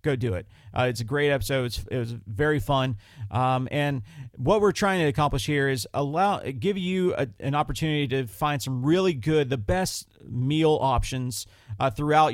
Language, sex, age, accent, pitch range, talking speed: English, male, 40-59, American, 125-155 Hz, 195 wpm